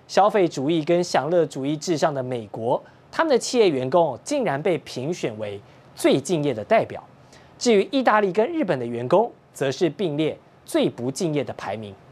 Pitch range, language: 135-200 Hz, Chinese